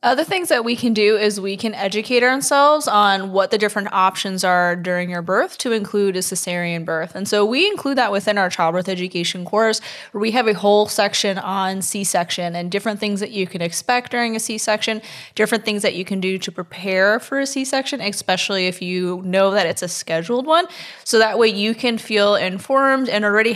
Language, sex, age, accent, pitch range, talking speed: English, female, 20-39, American, 180-225 Hz, 210 wpm